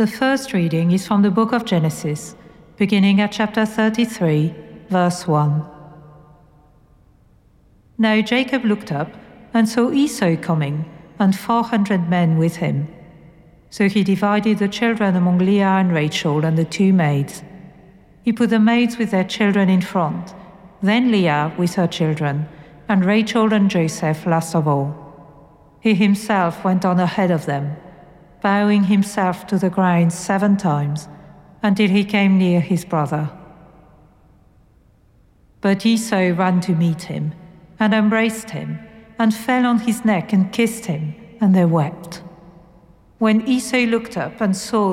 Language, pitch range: English, 165-215 Hz